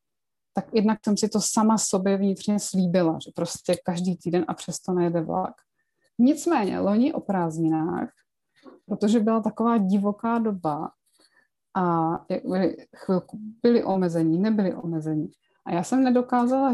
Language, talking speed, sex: Czech, 130 wpm, female